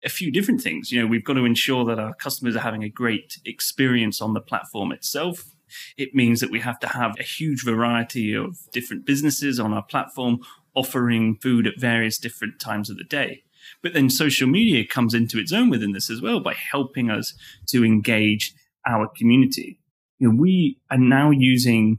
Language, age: English, 30-49